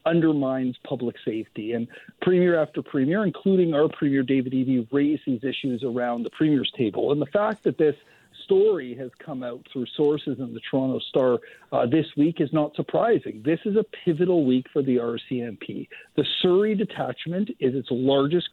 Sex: male